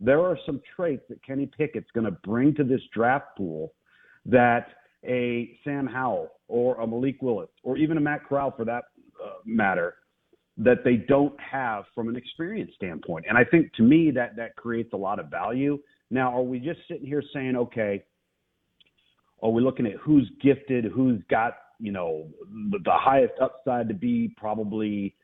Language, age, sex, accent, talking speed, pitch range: English, 40-59, male, American, 180 wpm, 110-135 Hz